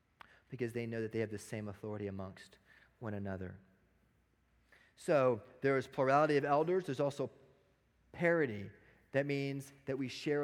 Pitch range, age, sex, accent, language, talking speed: 110-135 Hz, 30-49, male, American, English, 150 wpm